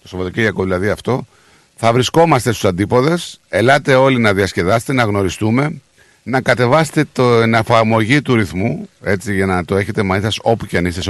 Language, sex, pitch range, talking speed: Greek, male, 100-130 Hz, 180 wpm